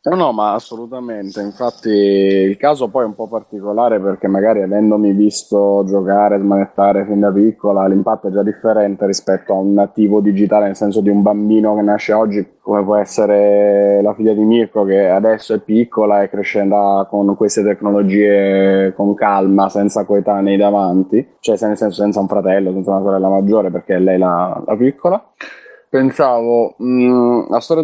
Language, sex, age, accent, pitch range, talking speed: Italian, male, 20-39, native, 100-110 Hz, 170 wpm